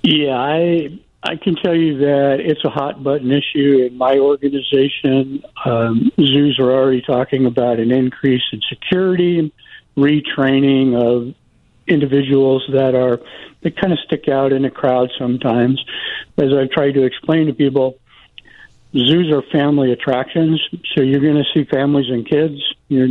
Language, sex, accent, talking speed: English, male, American, 155 wpm